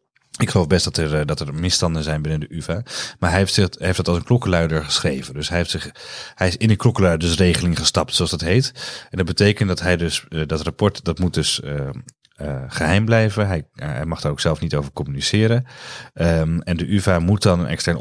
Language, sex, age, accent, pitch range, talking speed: Dutch, male, 30-49, Dutch, 80-95 Hz, 225 wpm